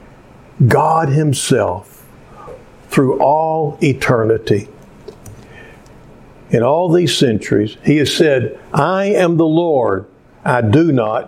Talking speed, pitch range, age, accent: 100 wpm, 135-205 Hz, 60-79, American